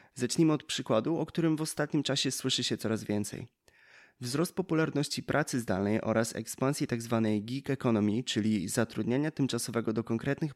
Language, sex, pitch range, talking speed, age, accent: Polish, male, 110-140 Hz, 150 wpm, 20-39, native